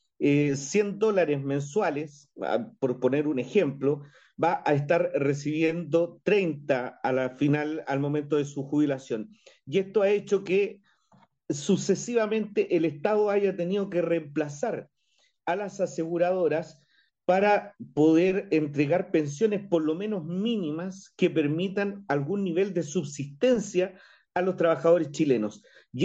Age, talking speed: 40-59, 125 wpm